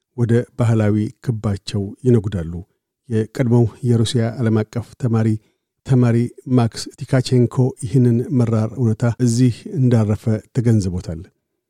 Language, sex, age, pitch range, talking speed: Amharic, male, 50-69, 110-125 Hz, 85 wpm